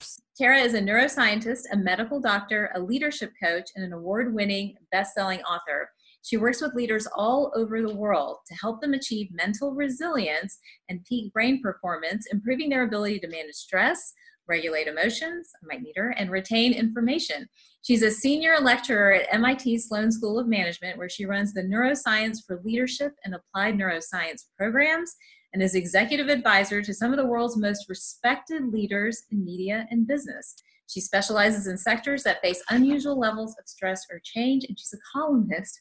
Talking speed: 170 wpm